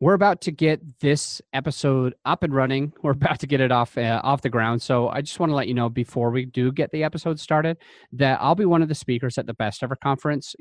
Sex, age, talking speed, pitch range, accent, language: male, 30-49, 260 wpm, 115-150 Hz, American, English